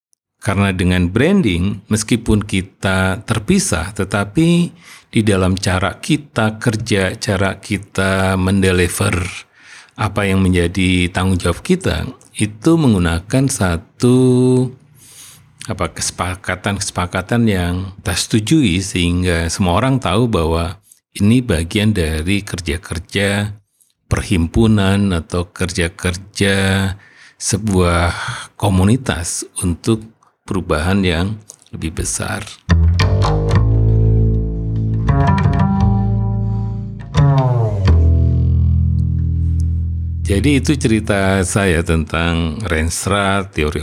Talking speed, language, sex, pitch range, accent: 75 wpm, Indonesian, male, 85-110 Hz, native